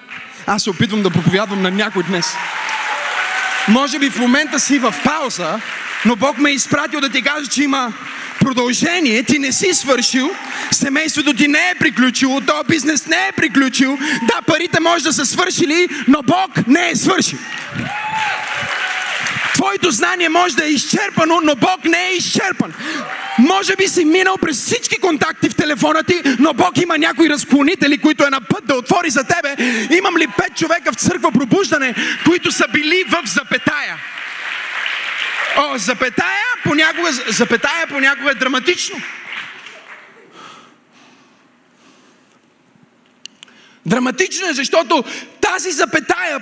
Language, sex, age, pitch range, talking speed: Bulgarian, male, 30-49, 270-345 Hz, 140 wpm